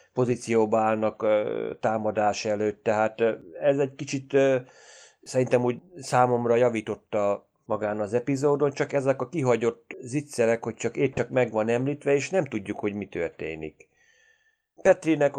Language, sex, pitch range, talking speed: Hungarian, male, 110-135 Hz, 135 wpm